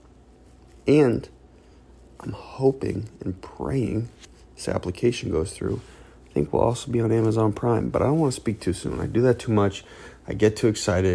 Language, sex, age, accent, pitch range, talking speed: English, male, 30-49, American, 90-125 Hz, 185 wpm